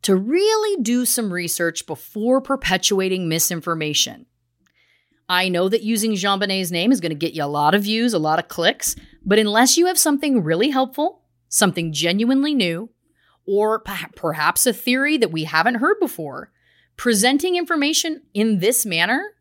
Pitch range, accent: 175-285 Hz, American